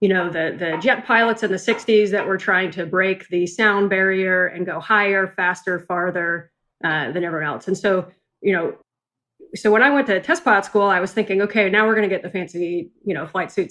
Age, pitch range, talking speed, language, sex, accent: 30-49, 180-210 Hz, 230 wpm, English, female, American